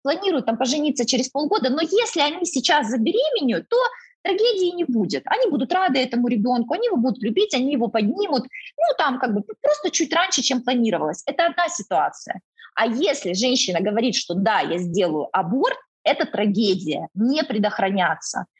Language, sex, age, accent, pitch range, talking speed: Russian, female, 20-39, native, 215-305 Hz, 165 wpm